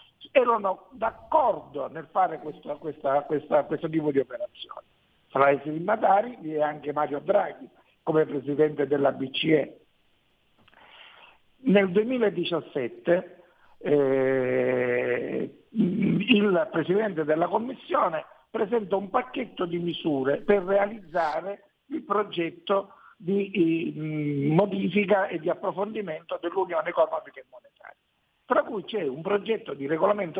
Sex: male